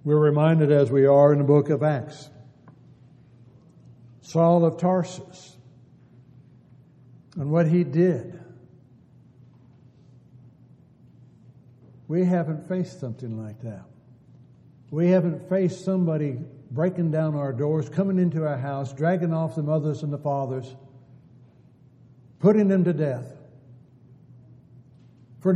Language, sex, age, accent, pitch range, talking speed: English, male, 60-79, American, 125-170 Hz, 110 wpm